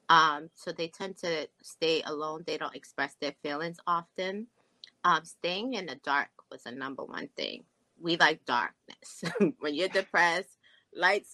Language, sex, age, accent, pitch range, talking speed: English, female, 20-39, American, 160-190 Hz, 160 wpm